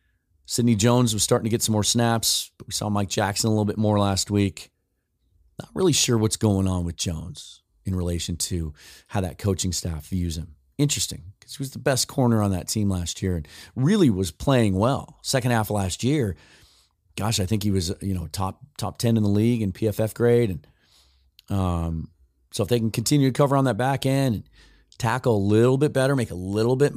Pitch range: 95-125 Hz